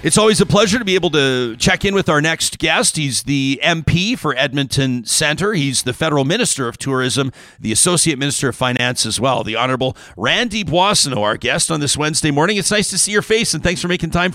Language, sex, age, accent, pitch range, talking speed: English, male, 40-59, American, 125-165 Hz, 225 wpm